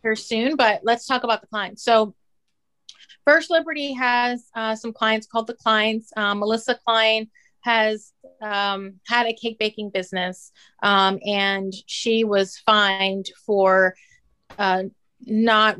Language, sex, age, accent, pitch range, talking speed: English, female, 30-49, American, 205-245 Hz, 135 wpm